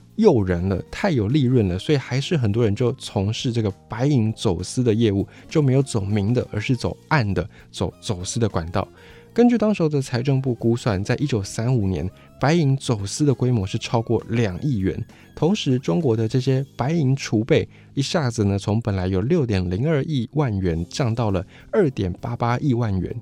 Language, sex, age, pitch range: Chinese, male, 20-39, 100-140 Hz